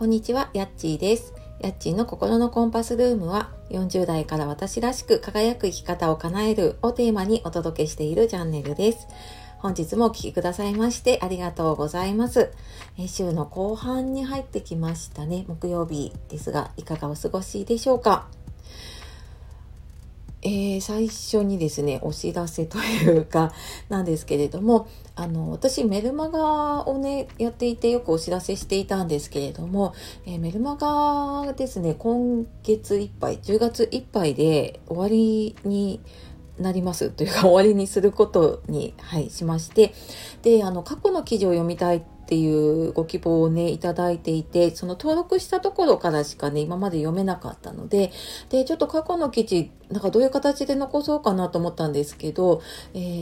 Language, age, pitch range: Japanese, 40-59, 165-240 Hz